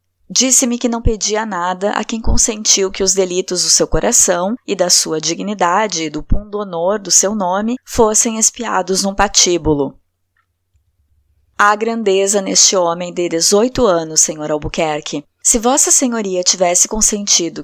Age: 20-39